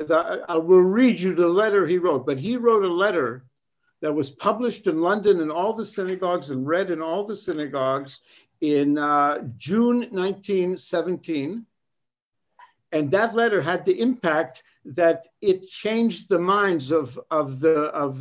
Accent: American